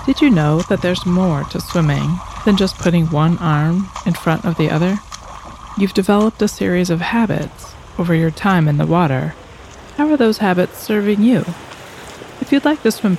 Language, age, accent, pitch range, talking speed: English, 30-49, American, 155-185 Hz, 185 wpm